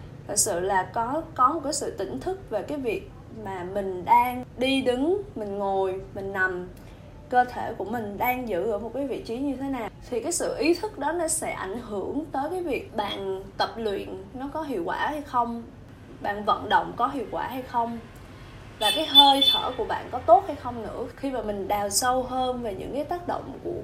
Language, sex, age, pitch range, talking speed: Vietnamese, female, 20-39, 210-310 Hz, 225 wpm